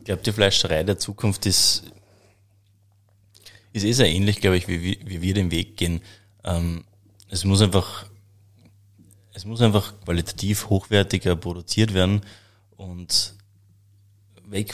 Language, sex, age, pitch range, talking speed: German, male, 20-39, 90-100 Hz, 135 wpm